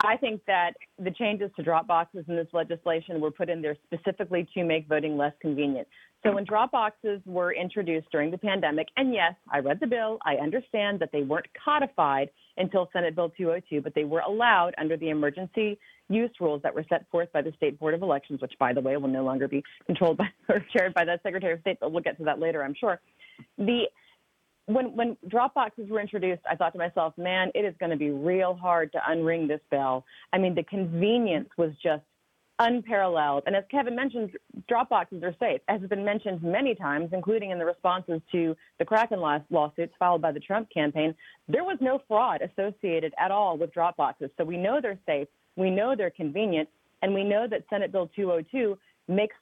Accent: American